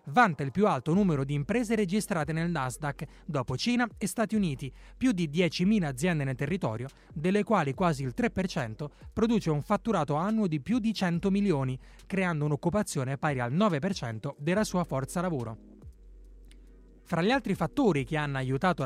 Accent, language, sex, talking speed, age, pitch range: native, Italian, male, 160 wpm, 30-49, 140-195 Hz